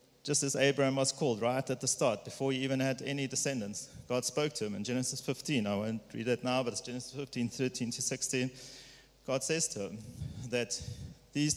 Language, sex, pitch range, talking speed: English, male, 125-145 Hz, 205 wpm